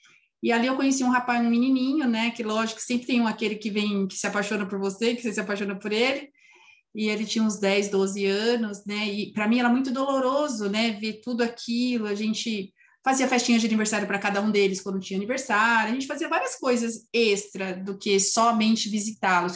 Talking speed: 210 wpm